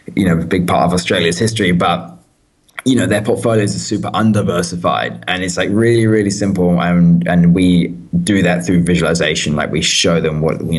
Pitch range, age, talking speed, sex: 85-95 Hz, 20-39, 195 wpm, male